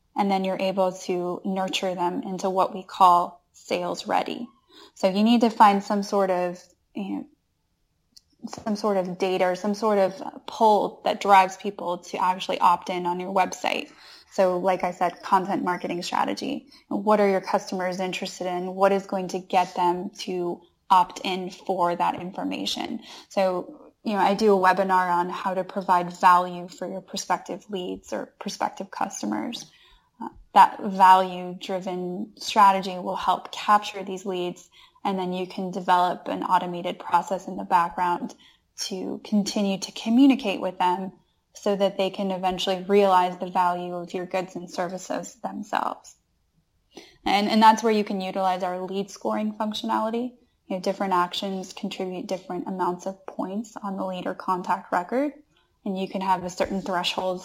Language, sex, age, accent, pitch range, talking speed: English, female, 10-29, American, 180-205 Hz, 165 wpm